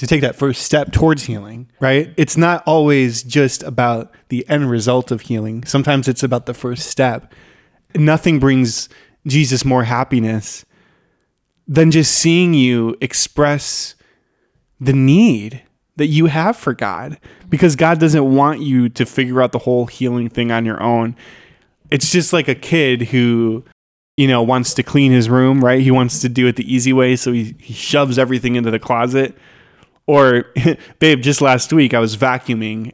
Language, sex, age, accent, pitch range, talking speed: English, male, 20-39, American, 120-155 Hz, 170 wpm